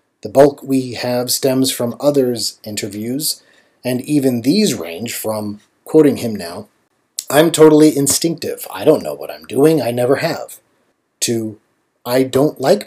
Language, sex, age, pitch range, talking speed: English, male, 40-59, 115-150 Hz, 150 wpm